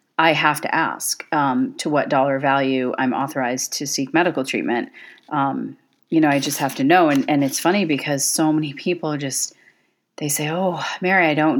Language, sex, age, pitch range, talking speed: English, female, 30-49, 140-165 Hz, 195 wpm